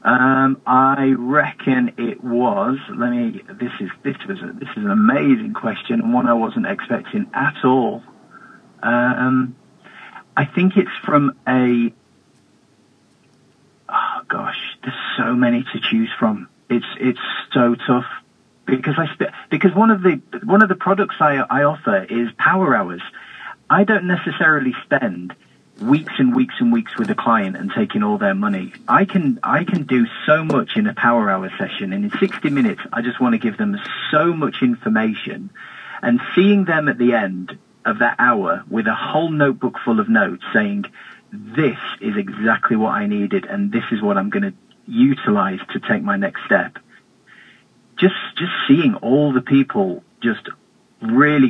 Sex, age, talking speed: male, 30-49, 170 wpm